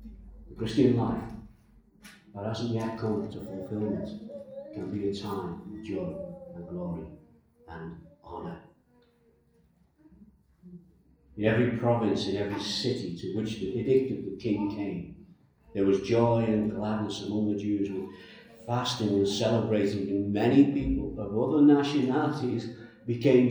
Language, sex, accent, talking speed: English, male, British, 130 wpm